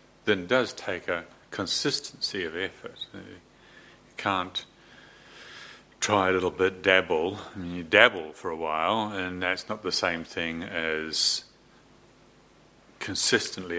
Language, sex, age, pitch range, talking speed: English, male, 60-79, 80-95 Hz, 125 wpm